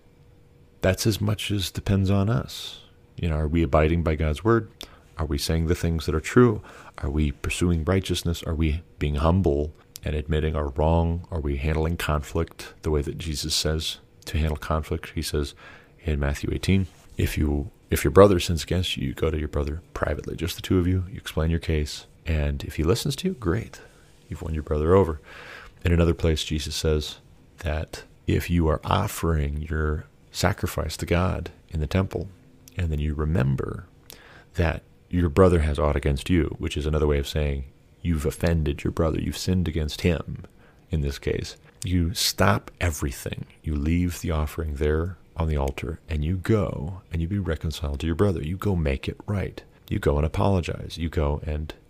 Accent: American